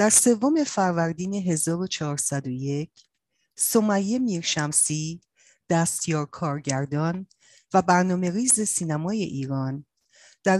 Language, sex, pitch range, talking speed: Persian, female, 145-195 Hz, 85 wpm